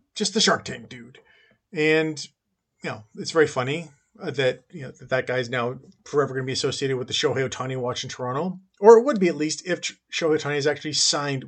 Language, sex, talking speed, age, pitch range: English, male, 225 wpm, 30-49, 135-180 Hz